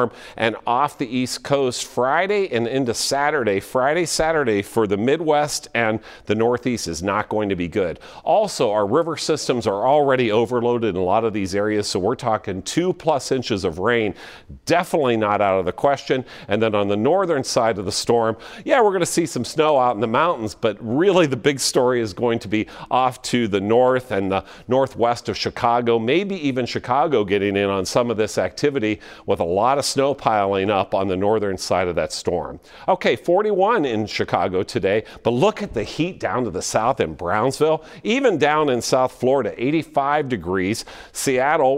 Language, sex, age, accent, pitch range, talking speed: English, male, 50-69, American, 105-145 Hz, 195 wpm